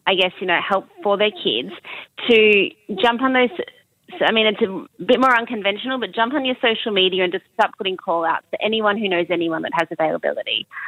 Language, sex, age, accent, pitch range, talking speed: English, female, 30-49, Australian, 180-215 Hz, 210 wpm